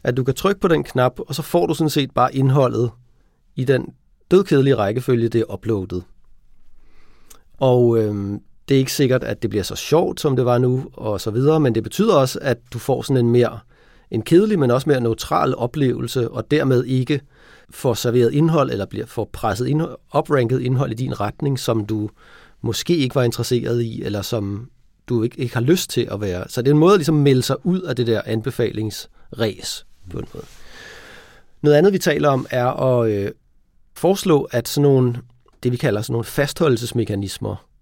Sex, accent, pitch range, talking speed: male, native, 115-140 Hz, 195 wpm